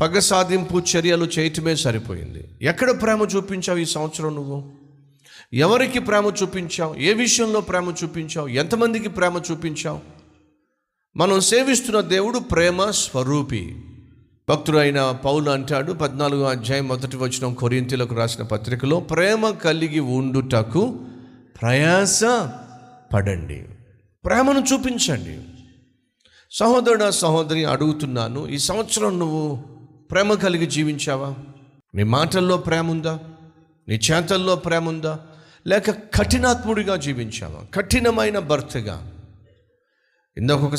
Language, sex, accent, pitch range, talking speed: Telugu, male, native, 125-185 Hz, 100 wpm